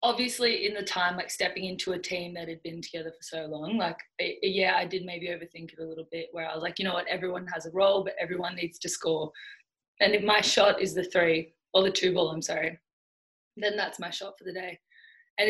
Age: 20-39